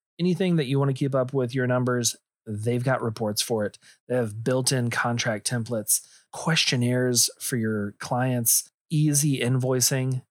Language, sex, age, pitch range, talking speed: English, male, 30-49, 120-150 Hz, 155 wpm